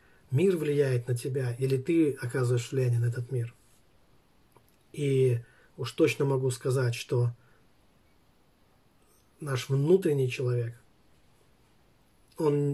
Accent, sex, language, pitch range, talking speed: native, male, Russian, 120-140 Hz, 100 wpm